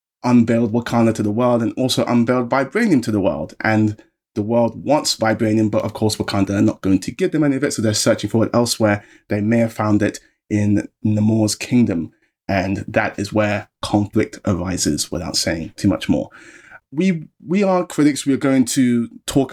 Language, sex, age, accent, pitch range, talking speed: English, male, 20-39, British, 110-130 Hz, 195 wpm